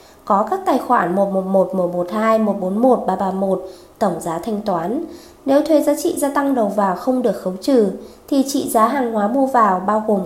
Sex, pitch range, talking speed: female, 200-270 Hz, 195 wpm